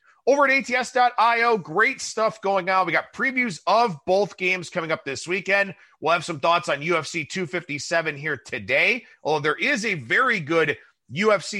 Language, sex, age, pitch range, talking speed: English, male, 30-49, 150-195 Hz, 170 wpm